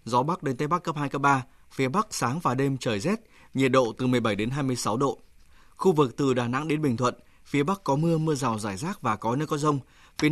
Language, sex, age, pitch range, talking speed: Vietnamese, male, 20-39, 125-150 Hz, 260 wpm